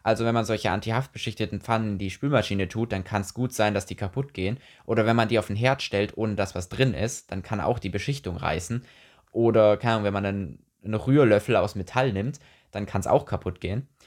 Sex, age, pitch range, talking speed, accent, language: male, 20-39, 100-130 Hz, 230 wpm, German, German